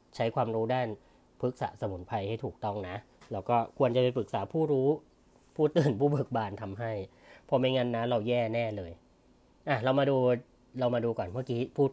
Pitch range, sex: 105-135 Hz, female